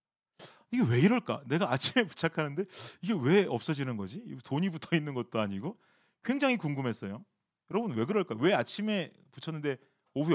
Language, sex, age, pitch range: Korean, male, 40-59, 125-205 Hz